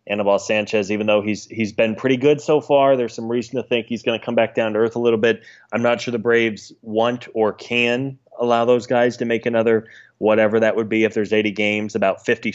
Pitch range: 105-115 Hz